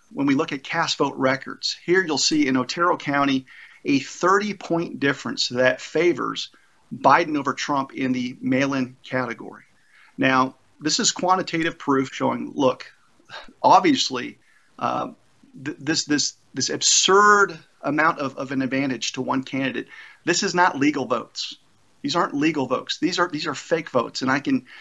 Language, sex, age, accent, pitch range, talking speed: English, male, 50-69, American, 135-200 Hz, 150 wpm